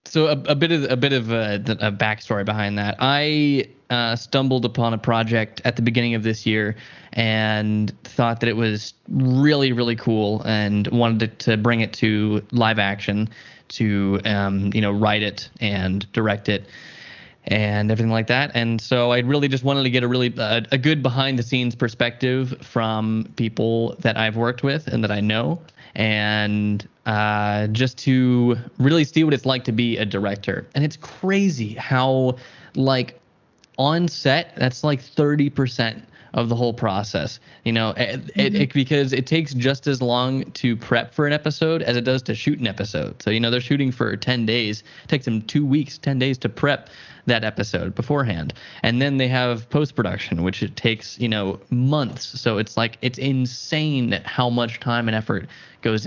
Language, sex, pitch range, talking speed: English, male, 110-135 Hz, 185 wpm